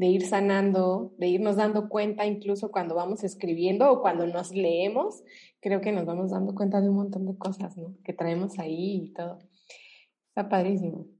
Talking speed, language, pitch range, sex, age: 180 wpm, Spanish, 190-240 Hz, female, 20-39